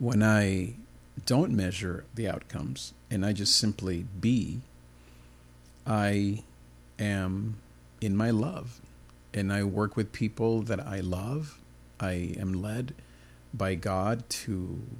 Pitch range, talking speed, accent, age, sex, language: 90-120 Hz, 120 wpm, American, 50-69, male, English